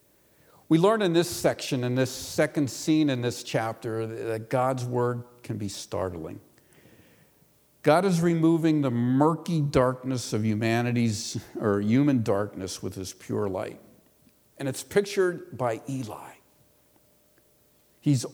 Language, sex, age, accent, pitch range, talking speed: English, male, 50-69, American, 105-145 Hz, 130 wpm